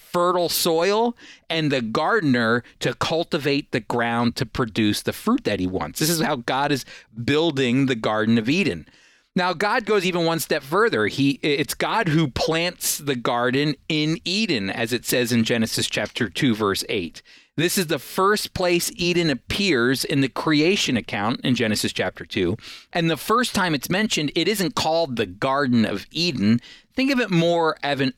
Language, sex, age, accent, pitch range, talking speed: English, male, 40-59, American, 120-170 Hz, 180 wpm